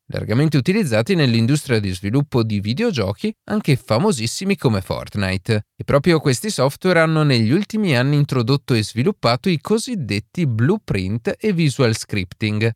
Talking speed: 130 wpm